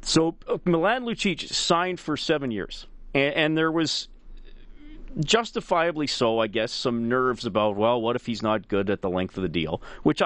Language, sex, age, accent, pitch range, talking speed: English, male, 40-59, American, 115-170 Hz, 180 wpm